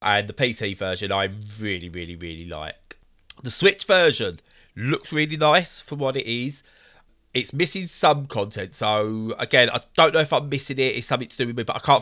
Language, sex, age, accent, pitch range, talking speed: English, male, 20-39, British, 100-125 Hz, 205 wpm